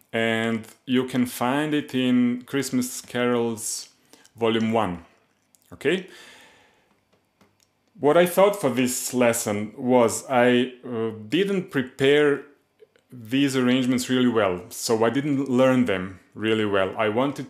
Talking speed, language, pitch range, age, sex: 120 wpm, English, 110-130 Hz, 30-49, male